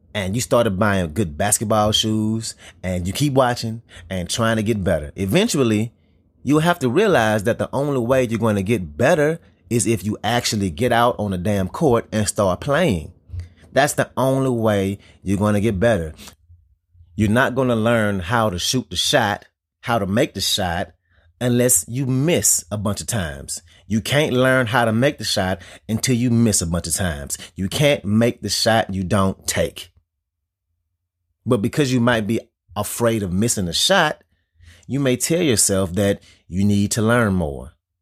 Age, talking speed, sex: 30-49, 185 wpm, male